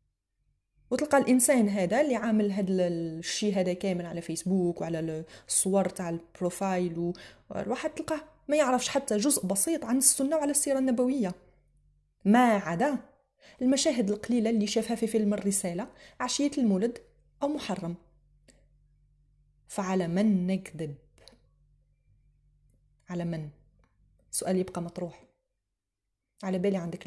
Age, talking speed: 30-49, 115 wpm